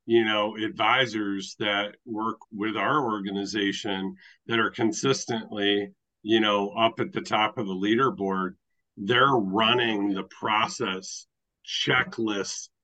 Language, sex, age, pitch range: English, male, 50-69, 105-130 Hz